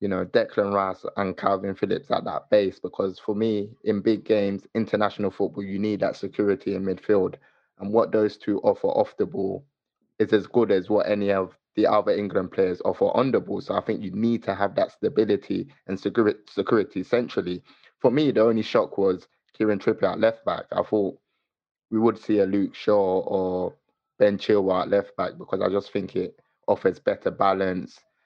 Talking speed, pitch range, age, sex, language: 190 wpm, 95-110 Hz, 20-39, male, English